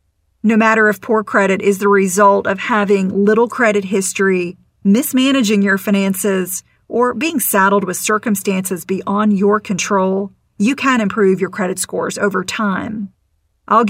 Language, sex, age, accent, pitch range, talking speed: English, female, 40-59, American, 195-235 Hz, 145 wpm